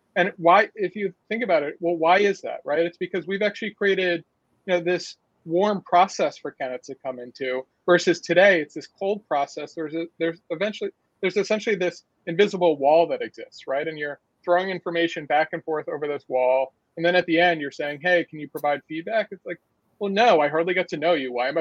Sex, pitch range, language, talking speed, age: male, 150-180 Hz, English, 210 wpm, 40-59